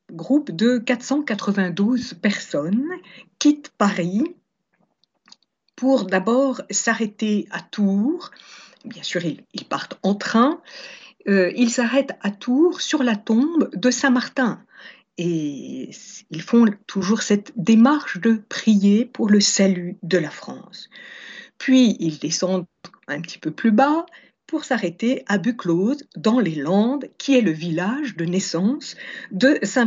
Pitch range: 190-250 Hz